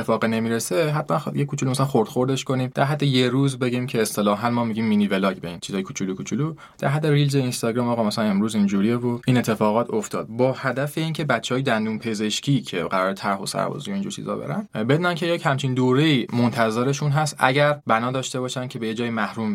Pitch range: 110-140 Hz